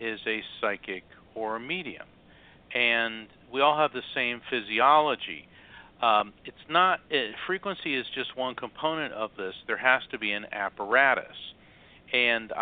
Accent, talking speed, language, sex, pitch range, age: American, 145 wpm, English, male, 105-130 Hz, 50-69